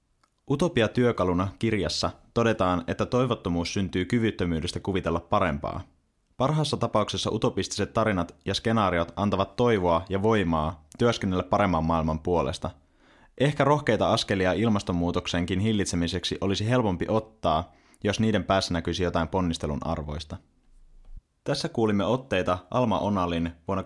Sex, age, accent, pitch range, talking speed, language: male, 20-39, native, 80-105 Hz, 110 wpm, Finnish